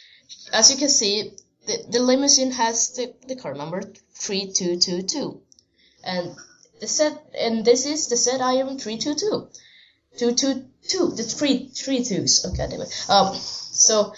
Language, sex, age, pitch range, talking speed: English, female, 10-29, 185-255 Hz, 165 wpm